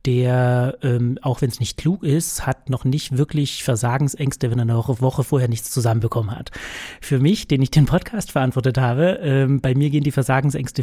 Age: 30-49